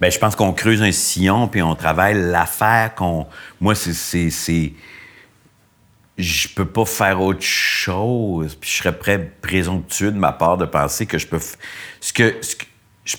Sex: male